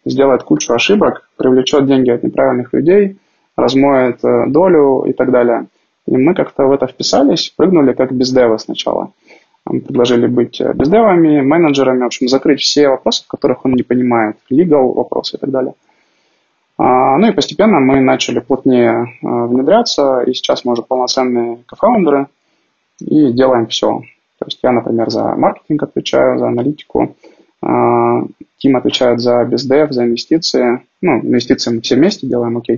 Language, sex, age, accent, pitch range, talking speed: Russian, male, 20-39, native, 120-135 Hz, 150 wpm